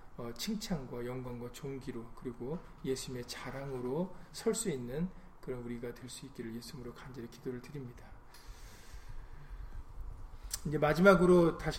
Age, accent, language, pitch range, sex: 40-59, native, Korean, 125-175 Hz, male